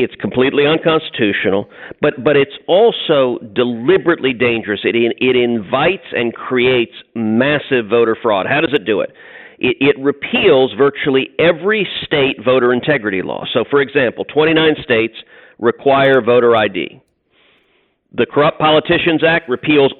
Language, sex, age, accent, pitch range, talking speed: English, male, 50-69, American, 120-150 Hz, 130 wpm